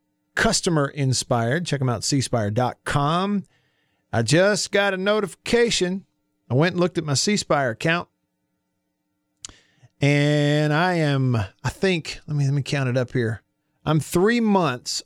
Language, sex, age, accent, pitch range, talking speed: English, male, 50-69, American, 120-160 Hz, 140 wpm